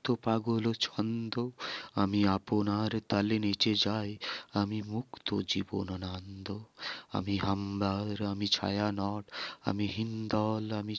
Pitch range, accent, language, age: 100-110 Hz, native, Bengali, 30-49